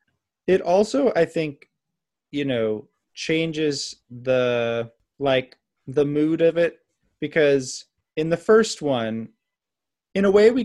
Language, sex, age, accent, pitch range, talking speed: English, male, 30-49, American, 125-155 Hz, 125 wpm